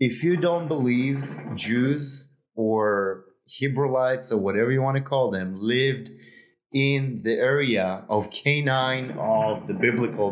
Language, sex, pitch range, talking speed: English, male, 115-150 Hz, 135 wpm